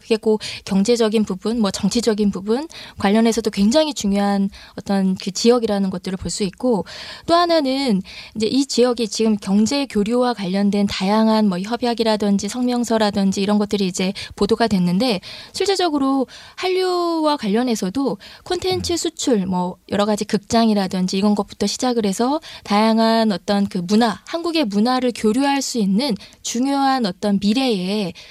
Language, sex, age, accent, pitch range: Korean, female, 20-39, native, 200-245 Hz